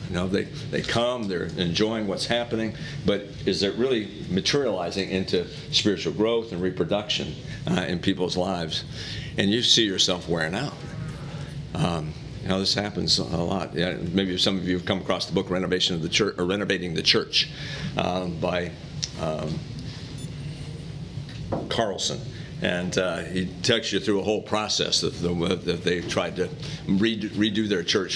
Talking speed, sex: 165 wpm, male